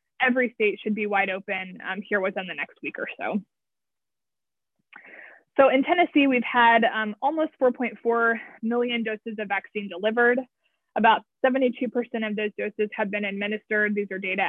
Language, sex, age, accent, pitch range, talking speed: English, female, 20-39, American, 200-230 Hz, 155 wpm